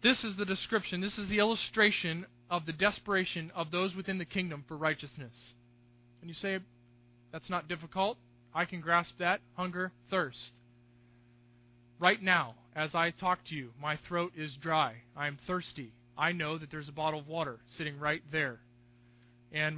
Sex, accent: male, American